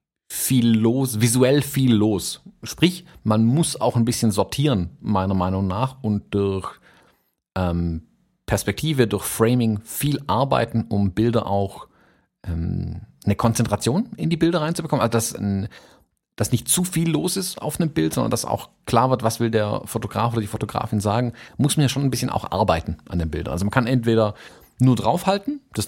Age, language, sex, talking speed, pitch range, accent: 40-59, German, male, 175 wpm, 100-135 Hz, German